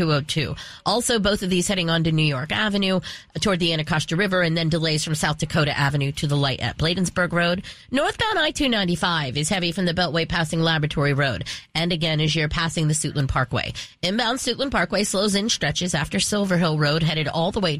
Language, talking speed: English, 200 wpm